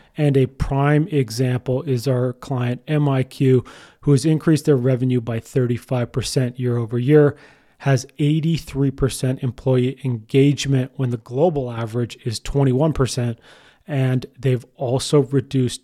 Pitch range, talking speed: 125-140 Hz, 120 wpm